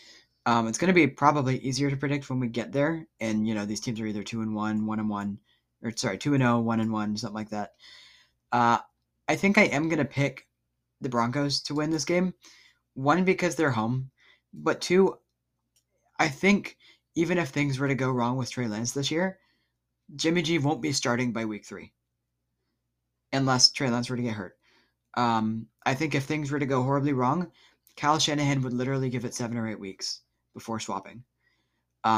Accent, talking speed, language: American, 205 wpm, English